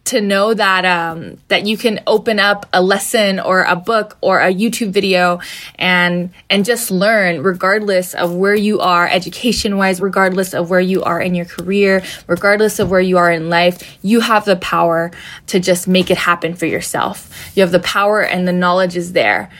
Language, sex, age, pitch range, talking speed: English, female, 10-29, 185-240 Hz, 195 wpm